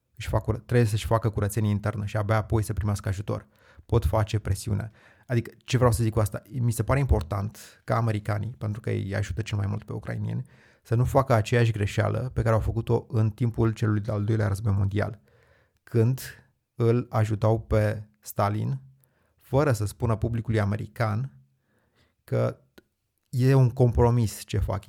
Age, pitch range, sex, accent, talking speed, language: 30-49, 105-120 Hz, male, native, 165 wpm, Romanian